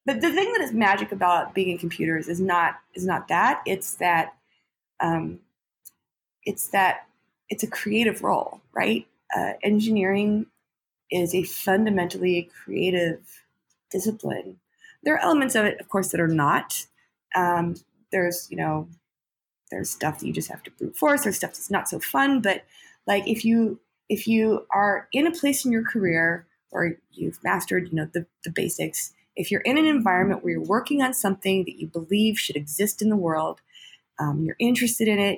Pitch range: 175-220 Hz